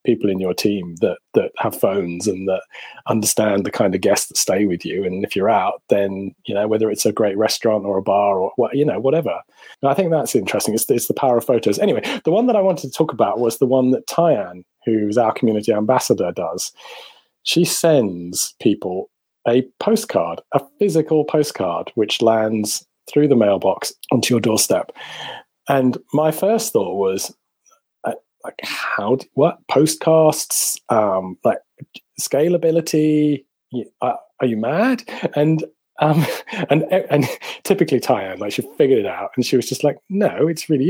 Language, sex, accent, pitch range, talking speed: English, male, British, 105-165 Hz, 180 wpm